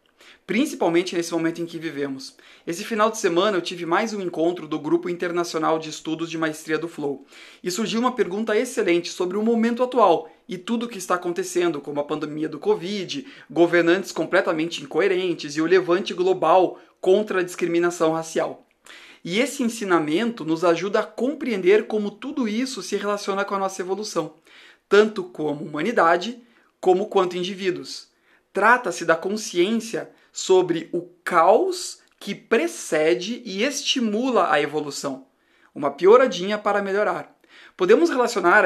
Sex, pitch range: male, 165-220 Hz